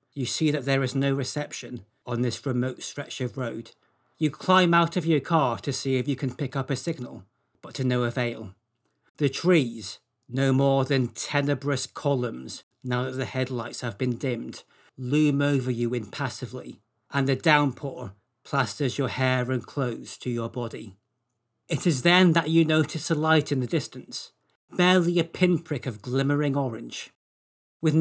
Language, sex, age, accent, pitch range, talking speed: English, male, 40-59, British, 125-155 Hz, 170 wpm